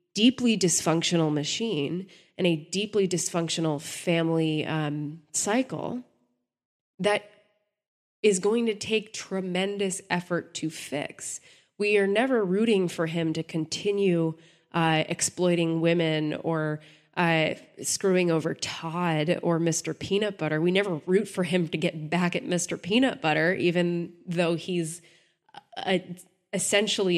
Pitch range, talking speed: 165-195 Hz, 120 wpm